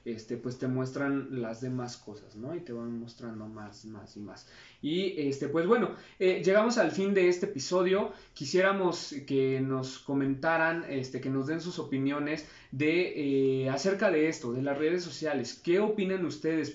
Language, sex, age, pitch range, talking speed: Spanish, male, 20-39, 125-170 Hz, 175 wpm